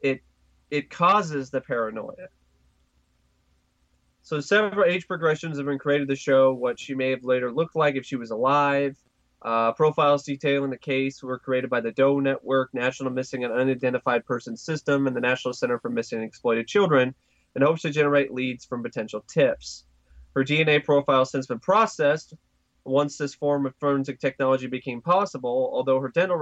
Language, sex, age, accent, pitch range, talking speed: English, male, 20-39, American, 125-150 Hz, 175 wpm